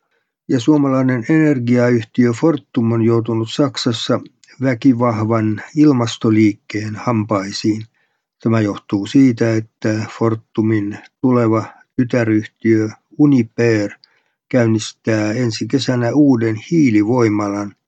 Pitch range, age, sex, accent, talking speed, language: 110-125 Hz, 60-79, male, native, 75 wpm, Finnish